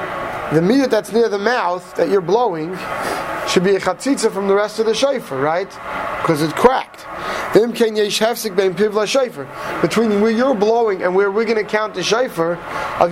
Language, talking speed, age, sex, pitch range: English, 165 wpm, 30-49, male, 195-235 Hz